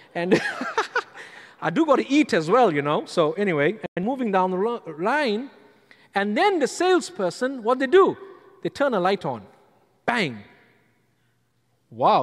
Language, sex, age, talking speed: English, male, 50-69, 150 wpm